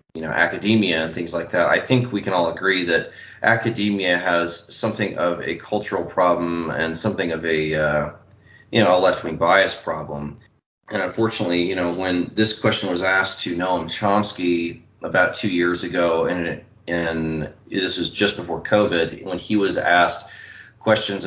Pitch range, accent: 80-100 Hz, American